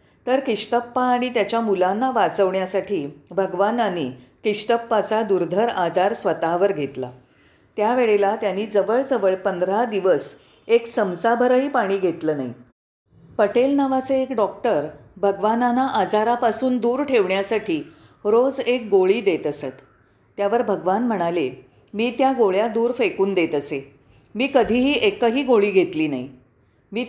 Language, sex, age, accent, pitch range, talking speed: Marathi, female, 40-59, native, 175-240 Hz, 115 wpm